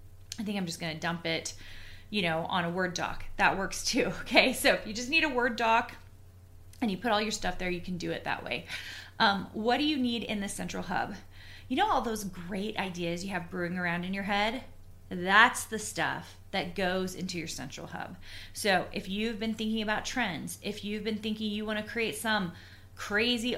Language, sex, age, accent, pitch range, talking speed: English, female, 30-49, American, 170-220 Hz, 220 wpm